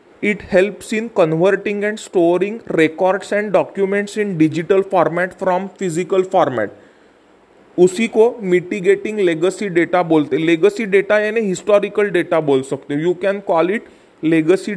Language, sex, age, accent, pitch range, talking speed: English, male, 30-49, Indian, 175-210 Hz, 135 wpm